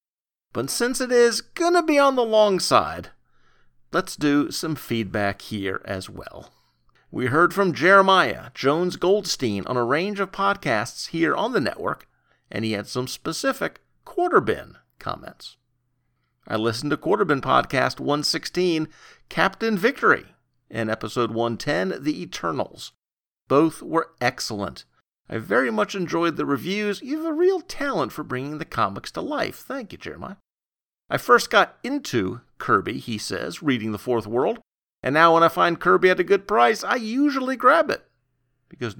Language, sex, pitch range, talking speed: English, male, 125-195 Hz, 155 wpm